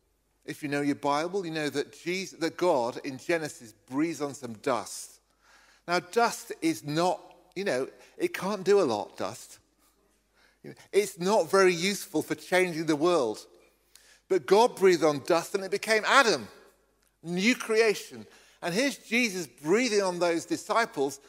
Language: English